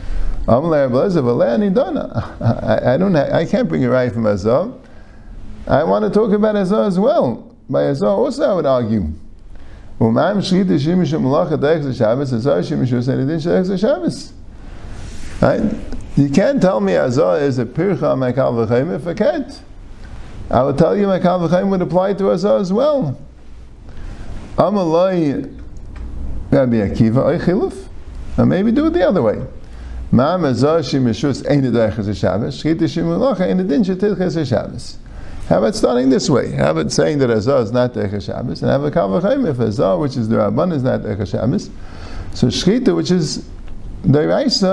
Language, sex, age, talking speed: English, male, 50-69, 140 wpm